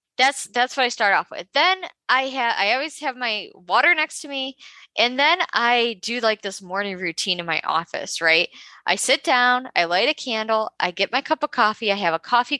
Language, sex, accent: English, female, American